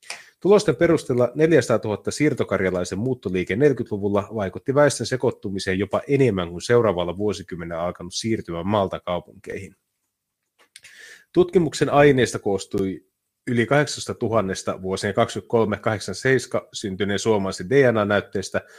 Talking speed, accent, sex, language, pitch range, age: 95 wpm, native, male, Finnish, 95-125 Hz, 30-49